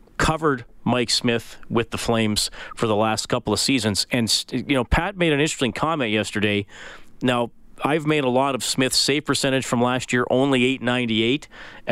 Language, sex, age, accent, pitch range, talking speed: English, male, 40-59, American, 110-130 Hz, 175 wpm